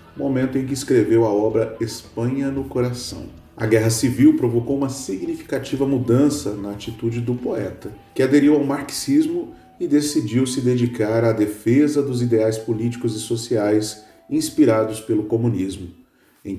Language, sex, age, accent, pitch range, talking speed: Portuguese, male, 40-59, Brazilian, 110-145 Hz, 140 wpm